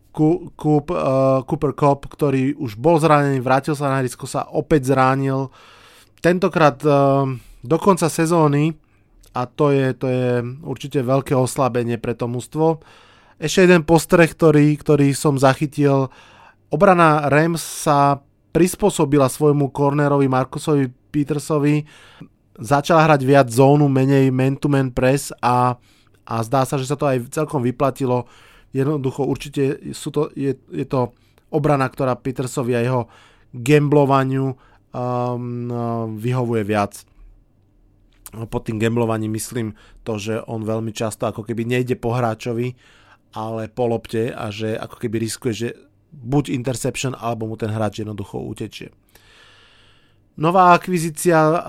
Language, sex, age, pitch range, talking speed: Slovak, male, 20-39, 120-145 Hz, 130 wpm